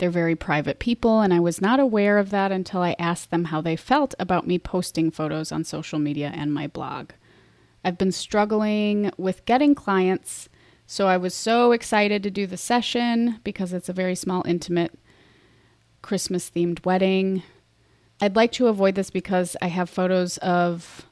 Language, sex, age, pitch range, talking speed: English, female, 30-49, 170-205 Hz, 175 wpm